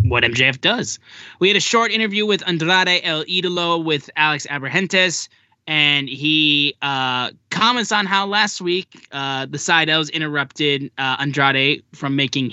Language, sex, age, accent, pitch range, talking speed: English, male, 10-29, American, 125-170 Hz, 155 wpm